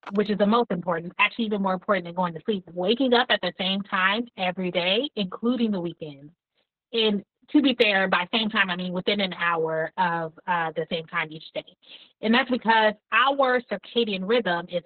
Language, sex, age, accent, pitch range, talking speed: English, female, 30-49, American, 175-220 Hz, 200 wpm